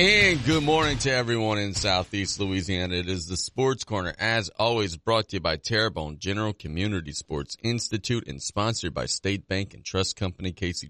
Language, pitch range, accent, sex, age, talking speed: English, 90-110 Hz, American, male, 30-49, 180 wpm